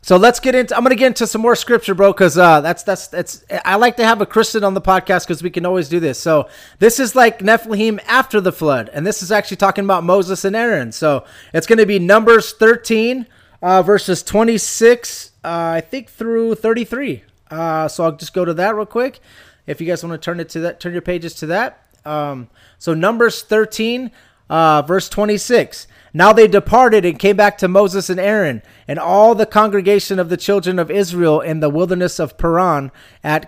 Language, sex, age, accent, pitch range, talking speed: English, male, 30-49, American, 165-215 Hz, 215 wpm